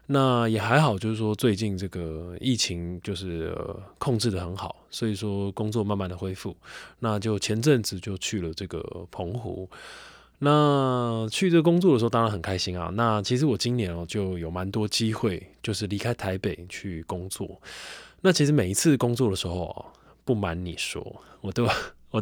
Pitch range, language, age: 90-120 Hz, Chinese, 20-39